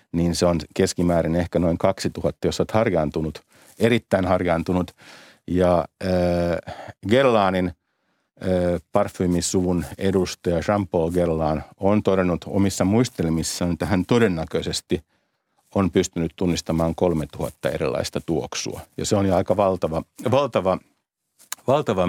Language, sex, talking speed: Finnish, male, 110 wpm